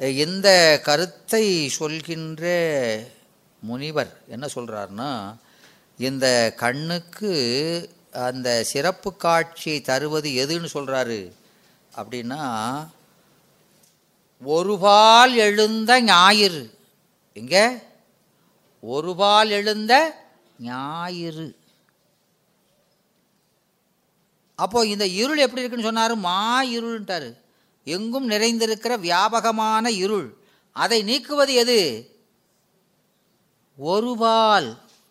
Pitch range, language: 165-235 Hz, Tamil